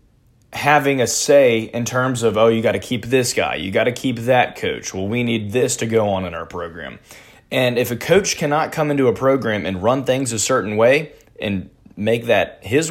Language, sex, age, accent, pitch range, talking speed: English, male, 20-39, American, 100-120 Hz, 225 wpm